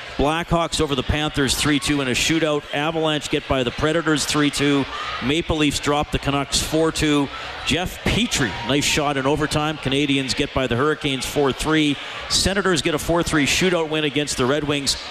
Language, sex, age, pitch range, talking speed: English, male, 50-69, 130-160 Hz, 185 wpm